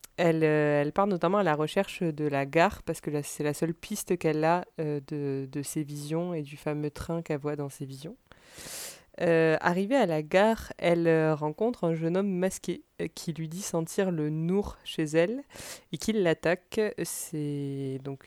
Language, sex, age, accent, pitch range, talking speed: French, female, 20-39, French, 145-175 Hz, 190 wpm